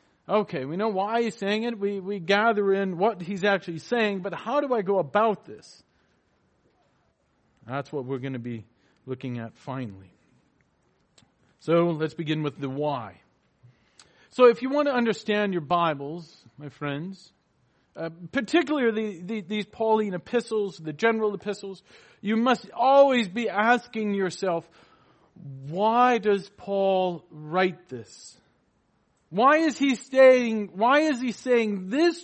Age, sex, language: 40-59, male, English